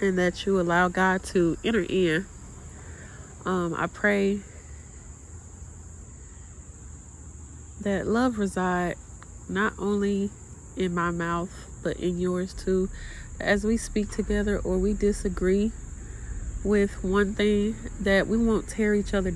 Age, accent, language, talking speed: 30-49, American, English, 120 wpm